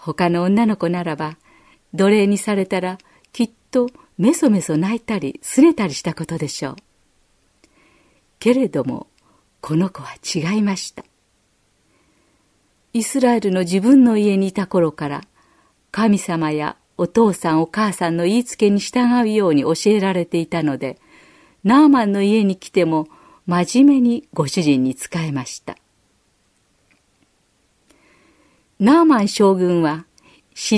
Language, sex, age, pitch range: Japanese, female, 50-69, 155-220 Hz